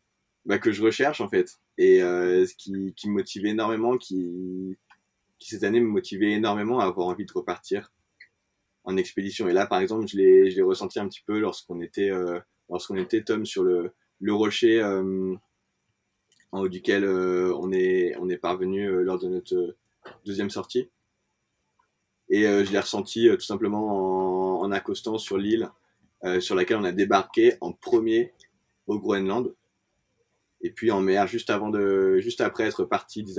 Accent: French